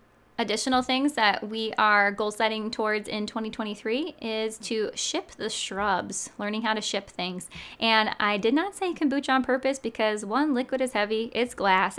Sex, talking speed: female, 175 wpm